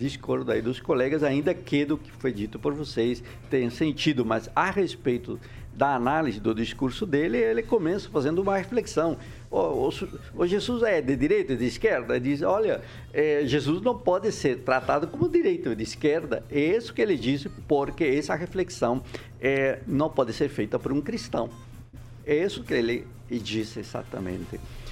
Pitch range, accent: 115-145 Hz, Brazilian